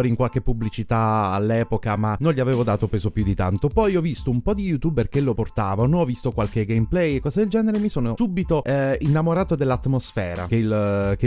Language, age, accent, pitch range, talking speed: Italian, 30-49, native, 110-145 Hz, 200 wpm